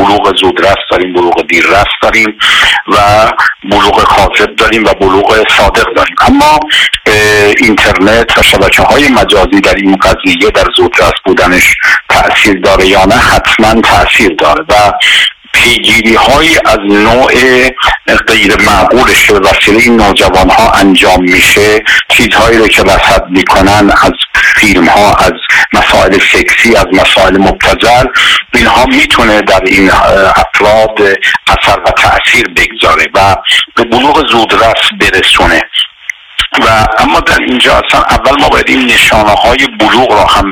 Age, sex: 50-69, male